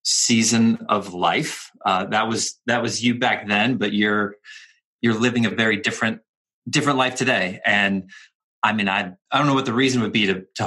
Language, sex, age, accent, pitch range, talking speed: English, male, 30-49, American, 110-140 Hz, 195 wpm